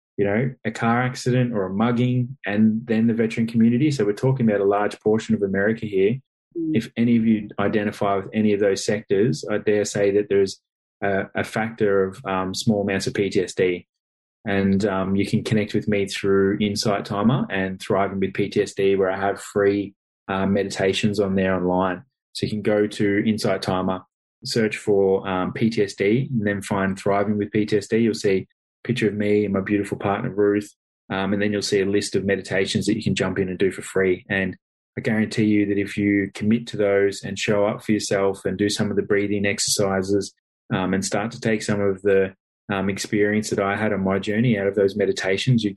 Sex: male